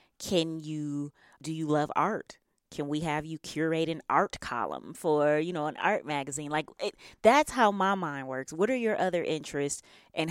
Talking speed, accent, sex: 190 wpm, American, female